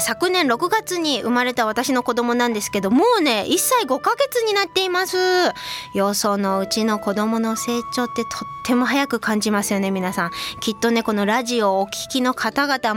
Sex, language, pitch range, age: female, Japanese, 210-320 Hz, 20-39